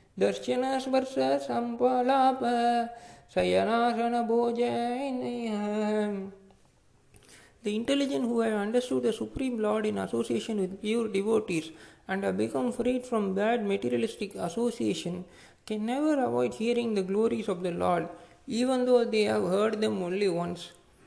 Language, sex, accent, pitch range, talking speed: Tamil, male, native, 180-245 Hz, 105 wpm